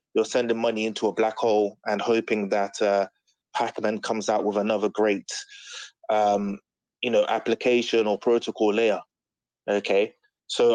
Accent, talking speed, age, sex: British, 145 wpm, 20-39, male